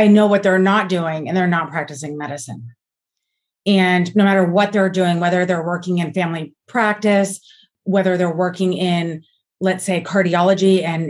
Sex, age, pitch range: female, 30-49, 170-230 Hz